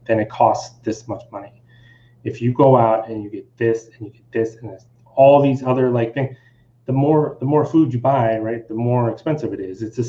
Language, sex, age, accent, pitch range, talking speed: English, male, 30-49, American, 115-135 Hz, 240 wpm